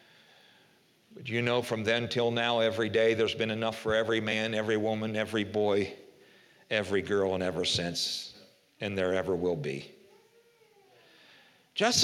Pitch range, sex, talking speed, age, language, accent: 115-195 Hz, male, 150 wpm, 50-69, English, American